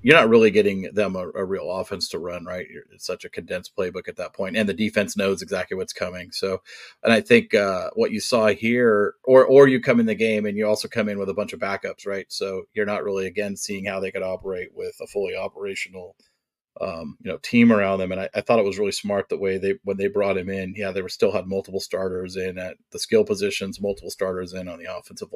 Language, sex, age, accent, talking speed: English, male, 30-49, American, 255 wpm